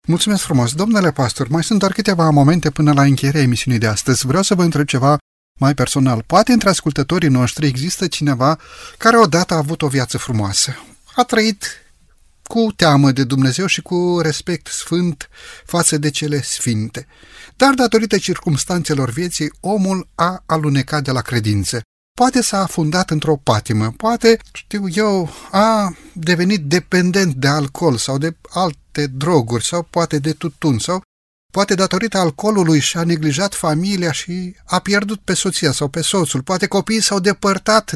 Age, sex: 30-49, male